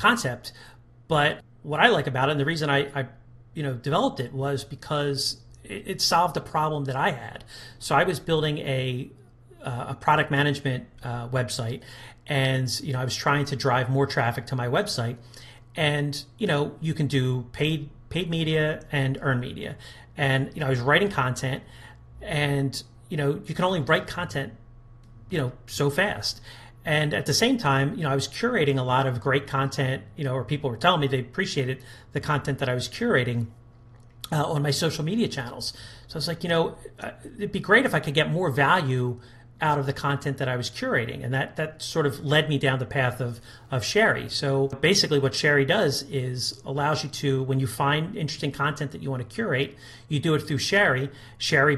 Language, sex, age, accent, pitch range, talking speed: English, male, 40-59, American, 125-150 Hz, 205 wpm